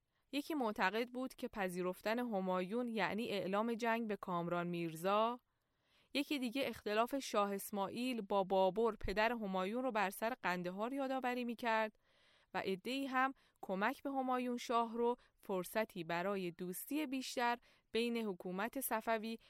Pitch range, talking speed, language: 190-260 Hz, 130 wpm, Persian